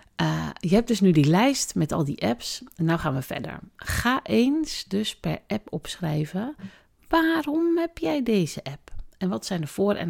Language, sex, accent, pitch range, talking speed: Dutch, female, Dutch, 155-215 Hz, 190 wpm